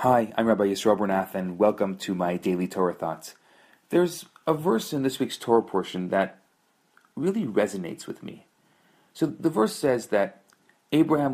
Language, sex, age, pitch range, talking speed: English, male, 40-59, 110-165 Hz, 165 wpm